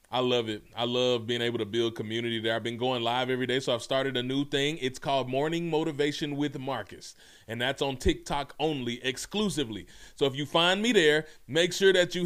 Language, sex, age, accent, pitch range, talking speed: English, male, 20-39, American, 125-170 Hz, 220 wpm